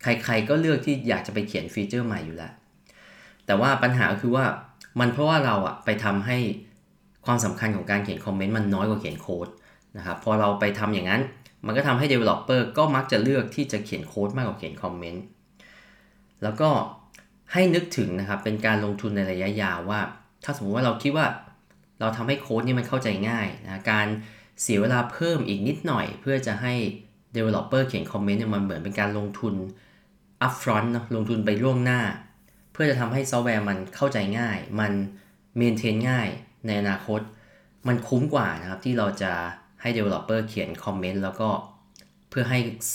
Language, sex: Thai, male